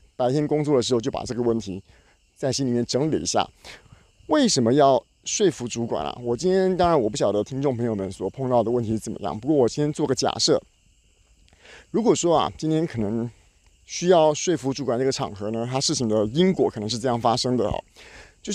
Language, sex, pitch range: Chinese, male, 115-155 Hz